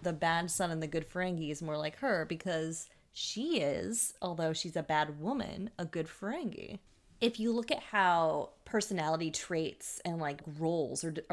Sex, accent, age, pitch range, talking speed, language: female, American, 20-39, 155-190 Hz, 175 wpm, English